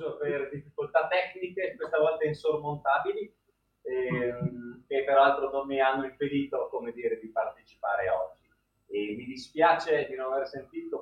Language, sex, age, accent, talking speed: Italian, male, 30-49, native, 135 wpm